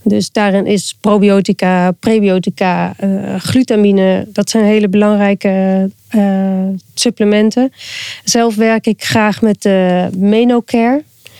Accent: Dutch